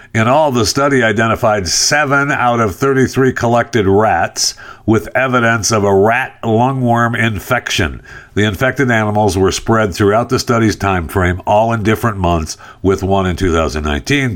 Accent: American